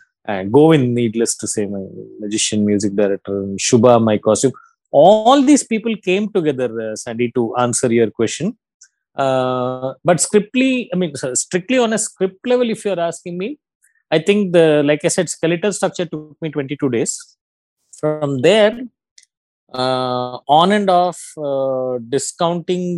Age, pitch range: 20-39, 120-165 Hz